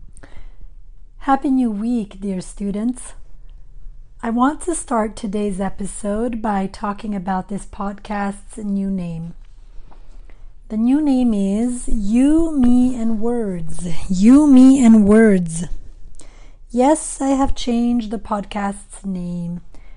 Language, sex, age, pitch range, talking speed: English, female, 30-49, 200-260 Hz, 110 wpm